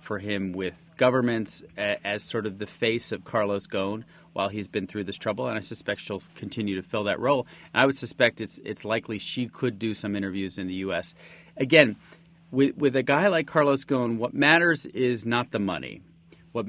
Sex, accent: male, American